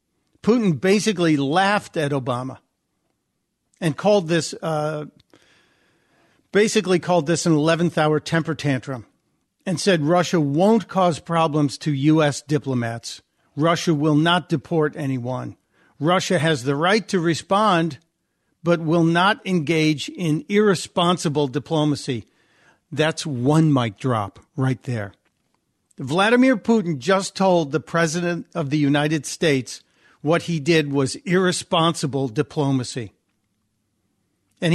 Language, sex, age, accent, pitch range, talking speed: English, male, 50-69, American, 140-180 Hz, 115 wpm